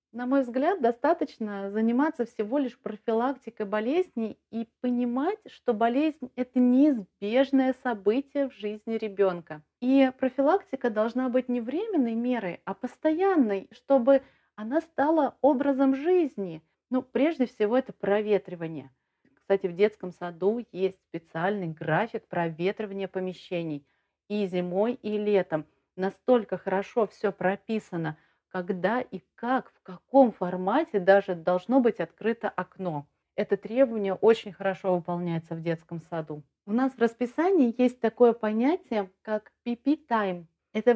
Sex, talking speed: female, 125 wpm